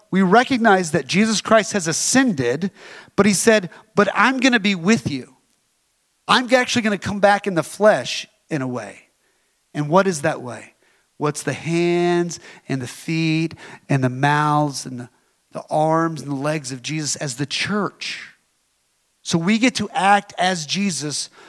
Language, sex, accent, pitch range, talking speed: English, male, American, 160-225 Hz, 175 wpm